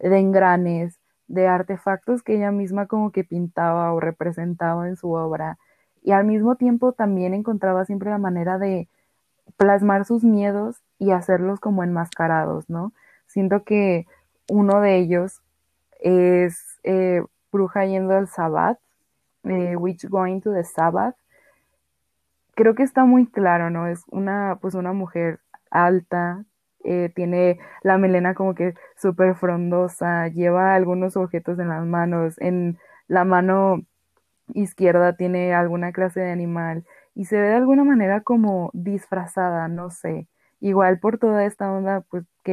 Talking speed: 145 wpm